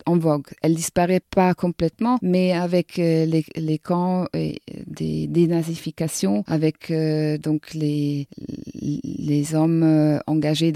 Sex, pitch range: female, 160-185 Hz